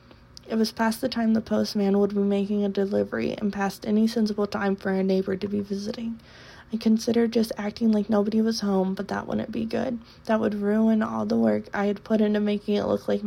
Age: 20-39